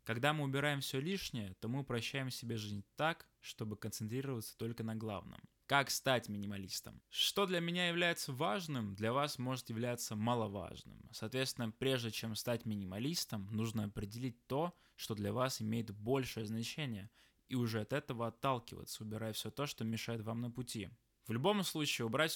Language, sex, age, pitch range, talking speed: Russian, male, 20-39, 110-140 Hz, 160 wpm